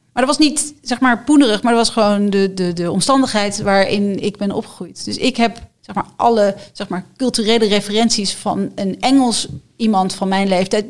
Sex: female